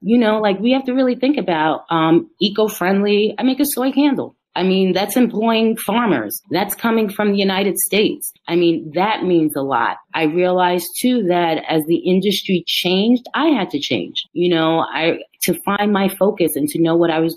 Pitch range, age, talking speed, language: 165-225 Hz, 30-49, 200 wpm, English